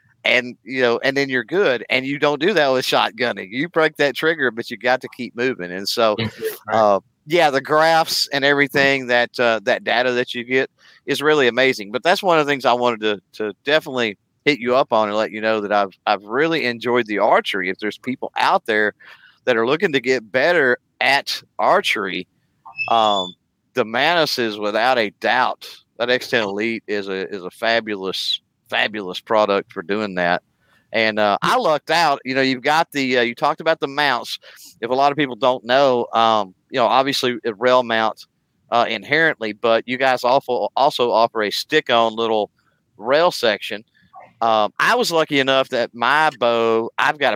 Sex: male